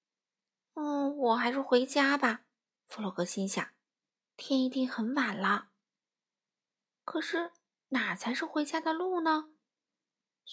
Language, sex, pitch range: Chinese, female, 220-300 Hz